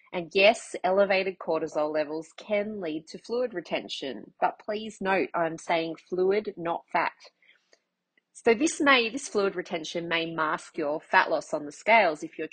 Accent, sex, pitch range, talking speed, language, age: Australian, female, 160-215 Hz, 165 wpm, English, 30-49